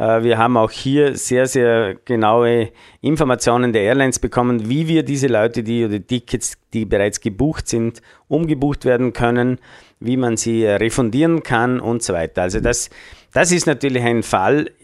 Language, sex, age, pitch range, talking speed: German, male, 50-69, 105-125 Hz, 165 wpm